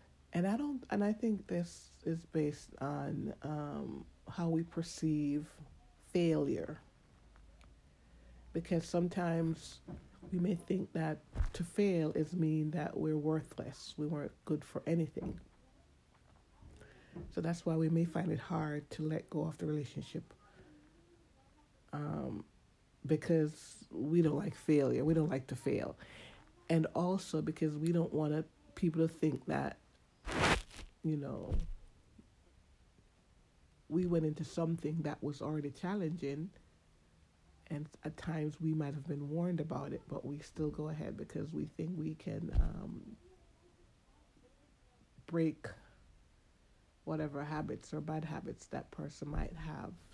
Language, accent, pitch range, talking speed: English, American, 140-165 Hz, 130 wpm